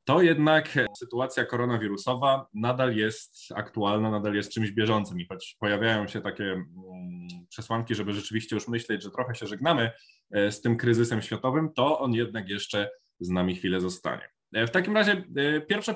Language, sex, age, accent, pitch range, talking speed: Polish, male, 20-39, native, 105-135 Hz, 155 wpm